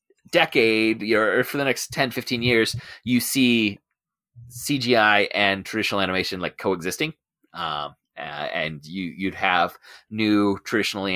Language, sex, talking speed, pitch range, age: English, male, 125 wpm, 95-130 Hz, 30-49